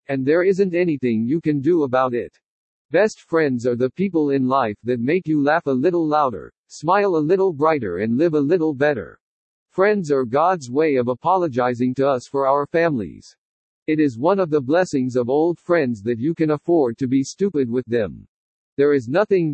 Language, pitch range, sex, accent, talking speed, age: English, 135-175 Hz, male, American, 195 wpm, 60-79